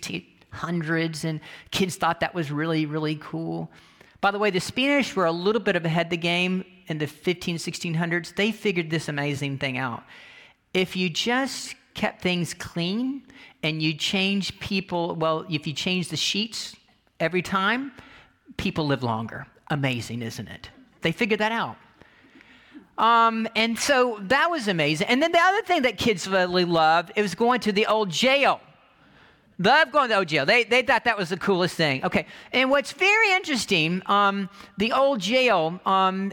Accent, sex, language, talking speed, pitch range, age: American, male, English, 175 wpm, 170-230 Hz, 40-59